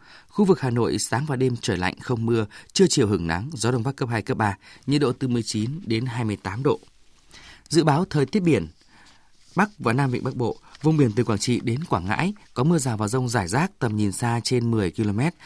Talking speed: 235 wpm